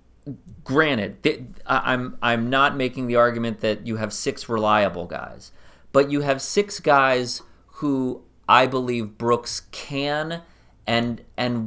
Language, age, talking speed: English, 30-49, 130 wpm